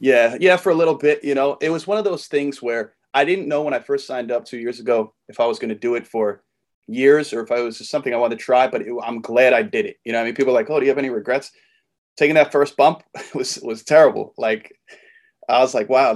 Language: English